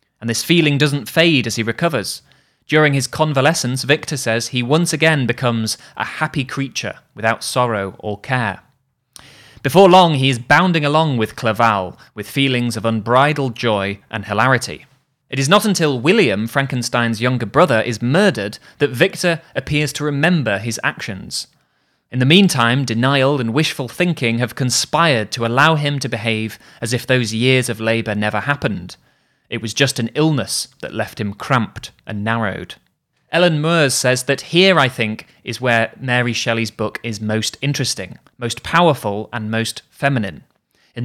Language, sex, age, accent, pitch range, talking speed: English, male, 20-39, British, 115-145 Hz, 160 wpm